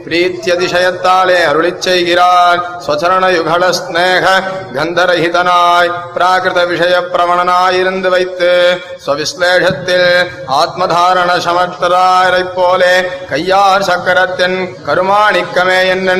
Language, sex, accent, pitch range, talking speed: Tamil, male, native, 175-185 Hz, 45 wpm